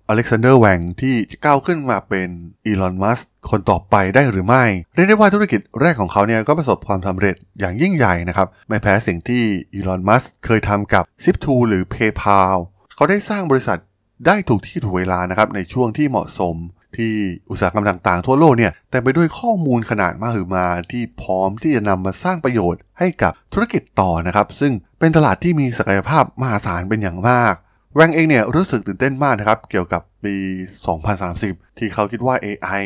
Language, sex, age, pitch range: Thai, male, 20-39, 95-130 Hz